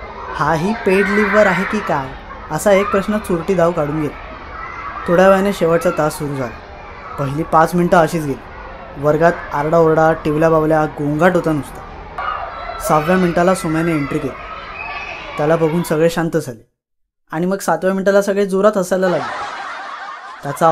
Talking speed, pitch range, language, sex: 145 wpm, 155-185 Hz, Marathi, female